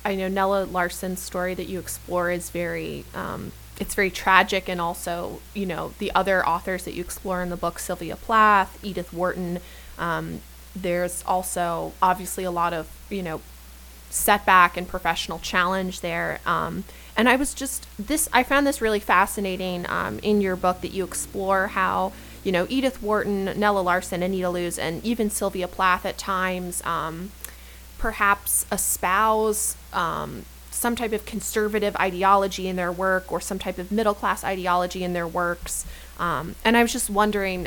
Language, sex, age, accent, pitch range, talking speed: English, female, 20-39, American, 175-205 Hz, 170 wpm